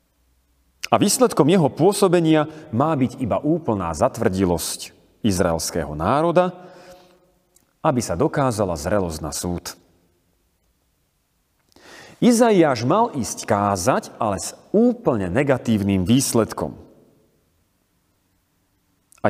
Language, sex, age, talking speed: Slovak, male, 40-59, 85 wpm